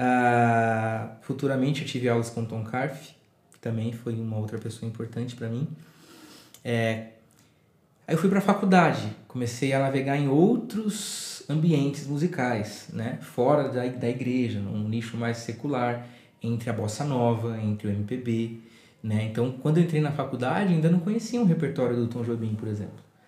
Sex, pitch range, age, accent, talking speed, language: male, 120-165 Hz, 20-39, Brazilian, 165 wpm, Portuguese